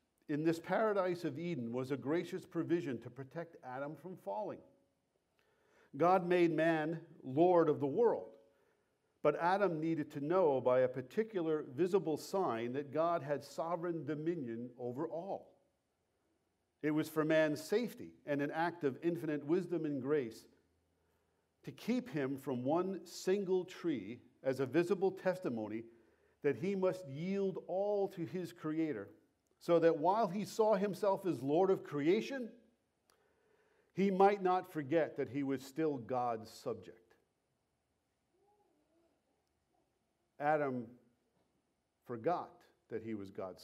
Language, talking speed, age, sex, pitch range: English, 130 wpm, 50-69, male, 130-185 Hz